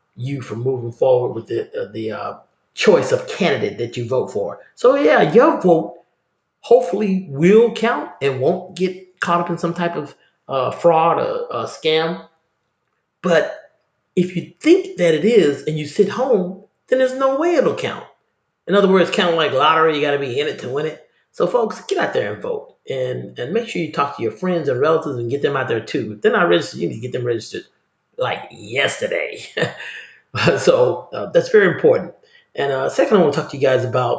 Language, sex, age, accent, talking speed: English, male, 40-59, American, 215 wpm